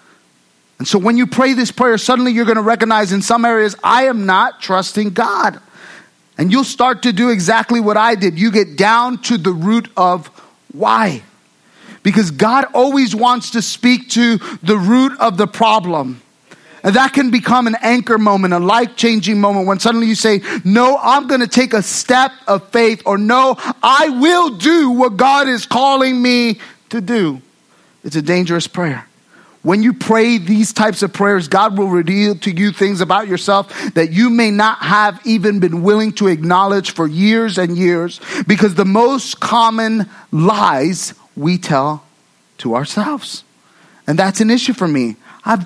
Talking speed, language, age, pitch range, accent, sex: 175 wpm, English, 30-49, 180-235 Hz, American, male